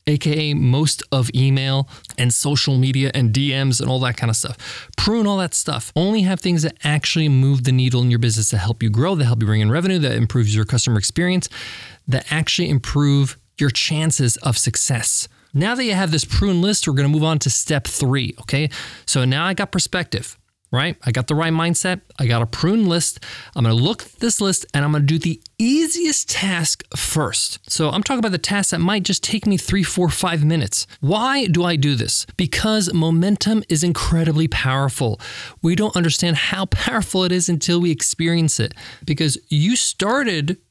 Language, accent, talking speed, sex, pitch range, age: English, American, 205 wpm, male, 130-180 Hz, 20-39